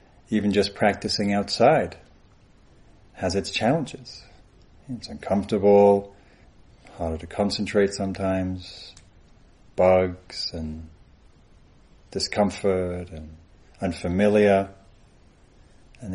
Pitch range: 85-100 Hz